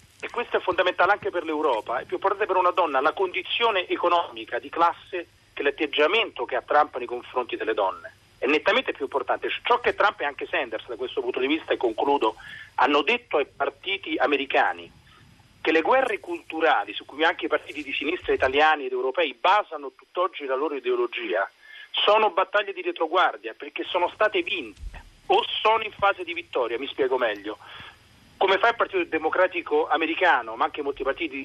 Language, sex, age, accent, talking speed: Italian, male, 40-59, native, 180 wpm